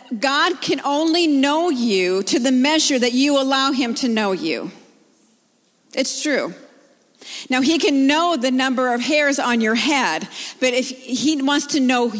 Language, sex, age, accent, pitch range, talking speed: English, female, 50-69, American, 230-285 Hz, 165 wpm